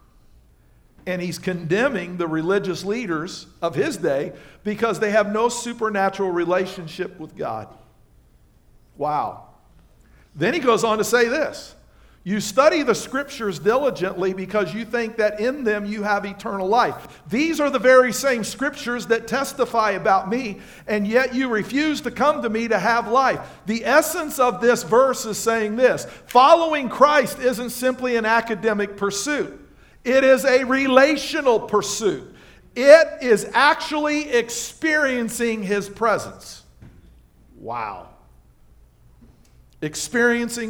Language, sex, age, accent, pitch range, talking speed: English, male, 50-69, American, 200-260 Hz, 130 wpm